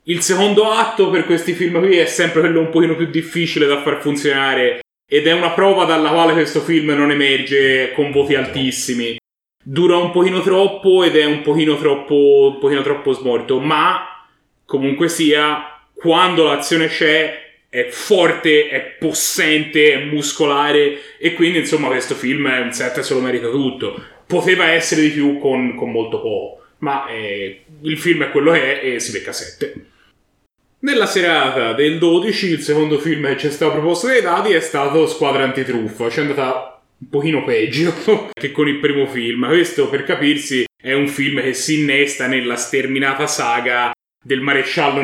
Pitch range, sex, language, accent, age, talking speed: 140-170 Hz, male, Italian, native, 30-49, 175 wpm